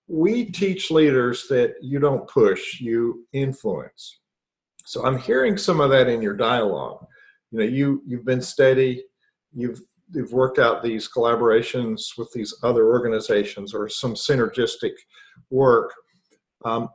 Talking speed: 140 wpm